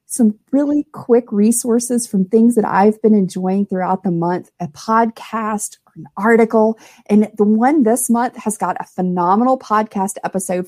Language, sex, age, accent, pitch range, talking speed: English, female, 40-59, American, 190-235 Hz, 165 wpm